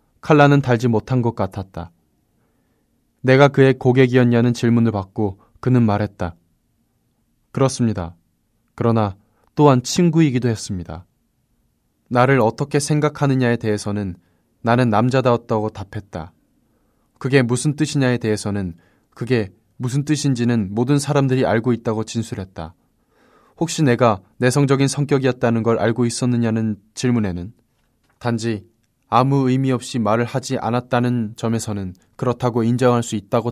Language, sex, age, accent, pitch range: Korean, male, 20-39, native, 105-130 Hz